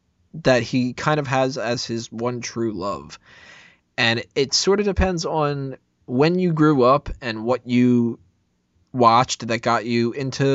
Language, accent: English, American